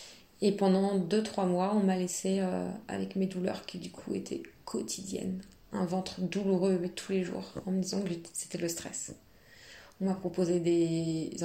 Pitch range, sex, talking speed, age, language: 175-205 Hz, female, 180 wpm, 20-39, French